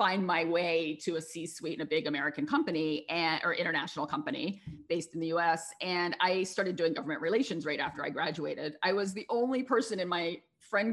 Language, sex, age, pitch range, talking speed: English, female, 40-59, 155-190 Hz, 200 wpm